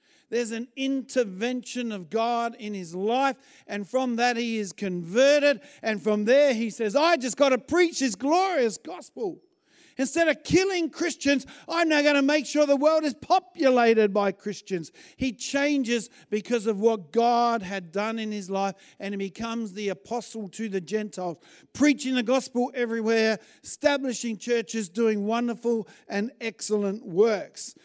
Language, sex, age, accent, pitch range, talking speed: English, male, 50-69, Australian, 205-270 Hz, 155 wpm